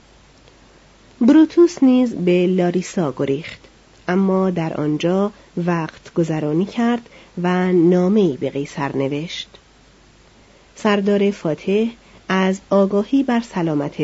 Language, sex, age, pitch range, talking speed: Persian, female, 40-59, 170-220 Hz, 95 wpm